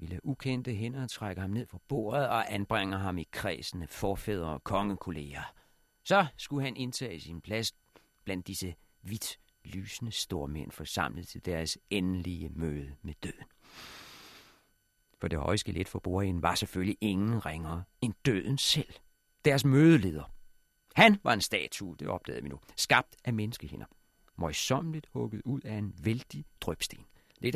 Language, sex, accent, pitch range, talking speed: Danish, male, native, 90-125 Hz, 150 wpm